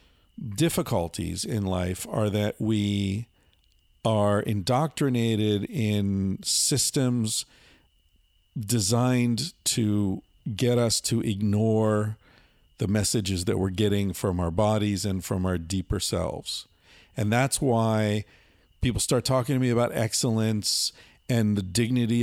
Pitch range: 100-125 Hz